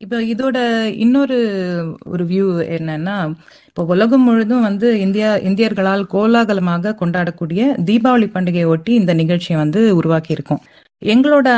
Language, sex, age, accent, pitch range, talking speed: Tamil, female, 30-49, native, 170-220 Hz, 115 wpm